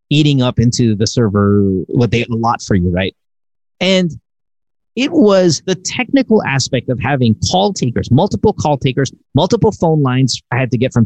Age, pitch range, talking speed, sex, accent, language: 30-49, 110-160 Hz, 185 wpm, male, American, English